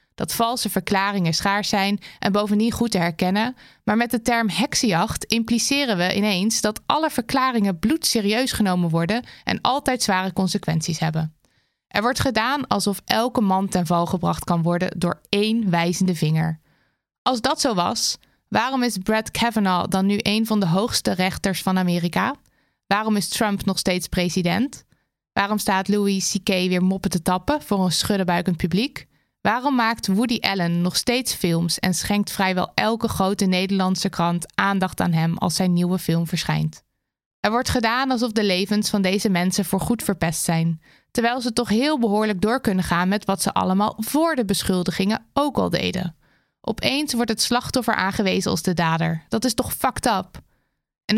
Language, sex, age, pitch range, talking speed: Dutch, female, 20-39, 180-230 Hz, 170 wpm